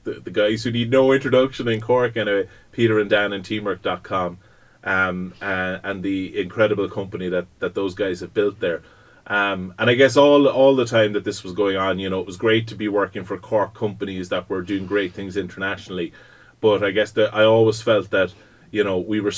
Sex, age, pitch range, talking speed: male, 30-49, 90-105 Hz, 215 wpm